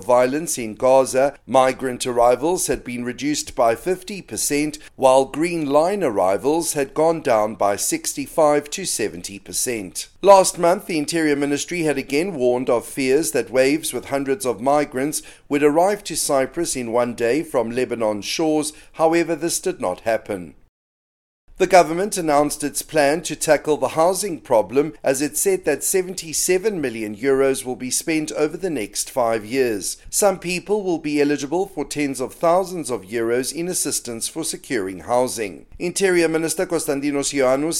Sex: male